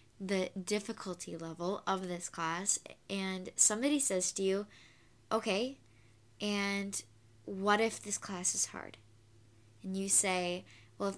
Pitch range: 190-255 Hz